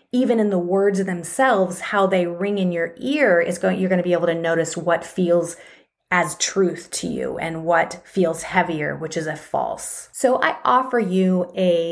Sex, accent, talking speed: female, American, 195 wpm